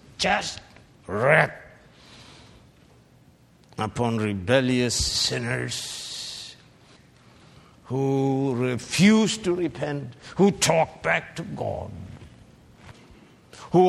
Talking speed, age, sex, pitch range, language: 65 wpm, 60-79, male, 120-145 Hz, English